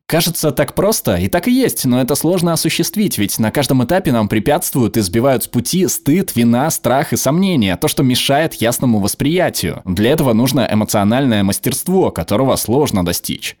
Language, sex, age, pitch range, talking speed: Russian, male, 20-39, 105-150 Hz, 170 wpm